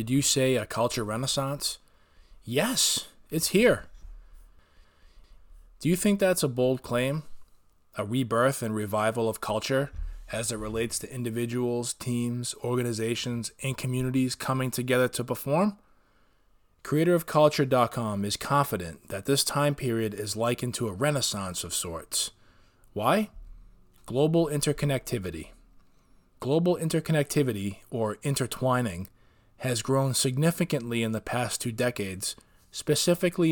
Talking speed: 115 wpm